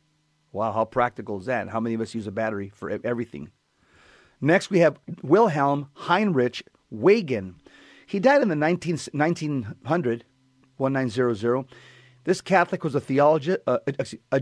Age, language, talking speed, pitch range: 40-59, English, 135 wpm, 120-160 Hz